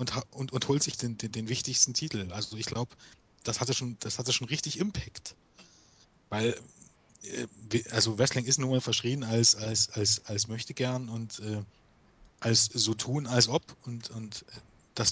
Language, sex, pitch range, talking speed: German, male, 110-130 Hz, 175 wpm